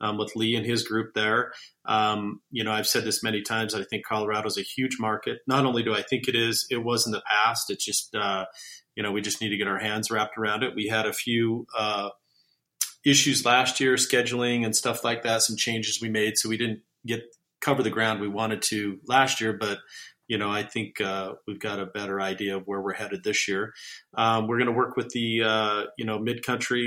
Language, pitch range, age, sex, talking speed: English, 105-125 Hz, 40-59, male, 240 wpm